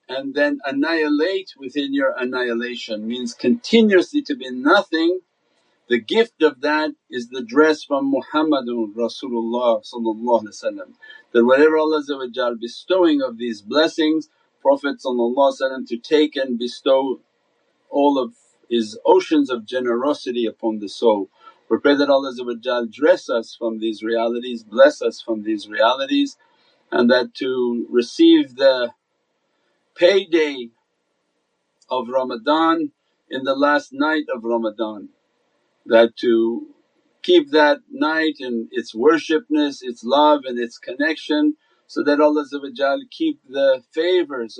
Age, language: 50-69, English